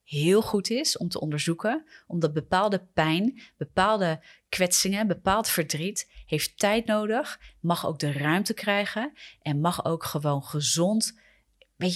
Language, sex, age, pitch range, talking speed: Dutch, female, 30-49, 155-205 Hz, 135 wpm